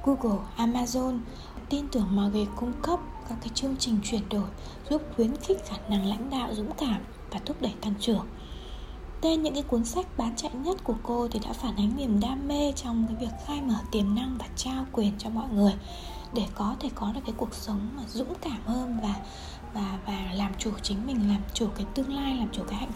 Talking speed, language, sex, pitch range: 225 wpm, Vietnamese, female, 210-260 Hz